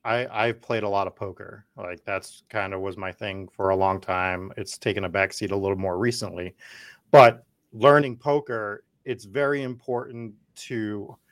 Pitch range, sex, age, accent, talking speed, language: 105-135 Hz, male, 30-49, American, 180 wpm, English